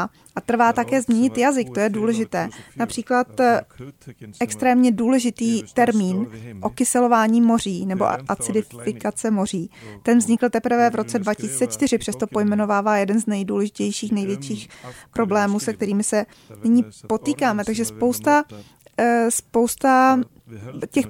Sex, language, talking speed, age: female, Czech, 110 wpm, 20-39